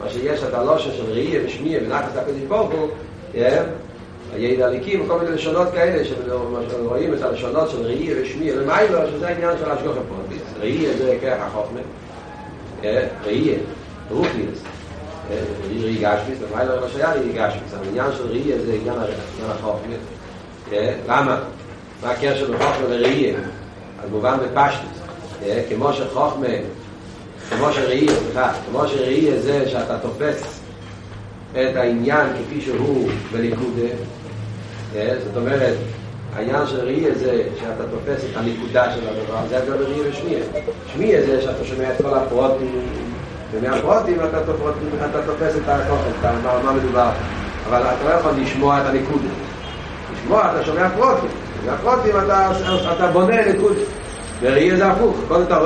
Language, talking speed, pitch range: Hebrew, 45 wpm, 110-150 Hz